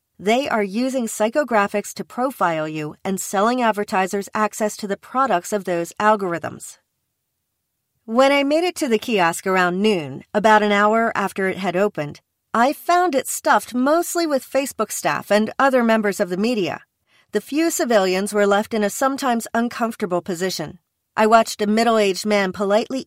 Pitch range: 185-240 Hz